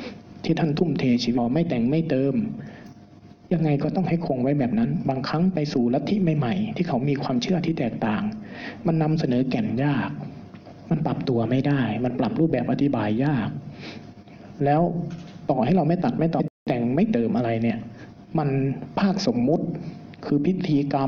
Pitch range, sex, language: 130-180 Hz, male, Thai